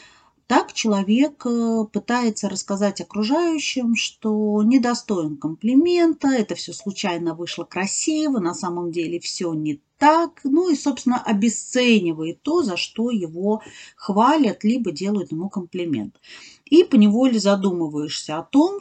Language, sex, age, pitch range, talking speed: Russian, female, 40-59, 180-250 Hz, 115 wpm